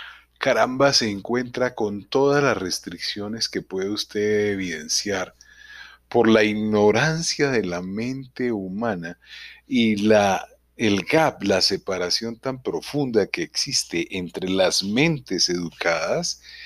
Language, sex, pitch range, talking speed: Spanish, male, 90-125 Hz, 110 wpm